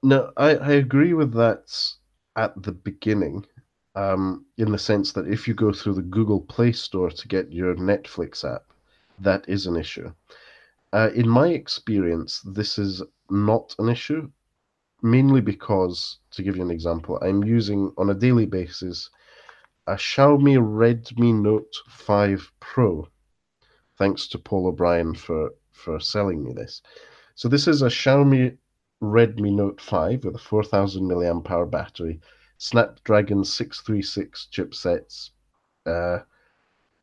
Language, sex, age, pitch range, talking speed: English, male, 30-49, 95-120 Hz, 140 wpm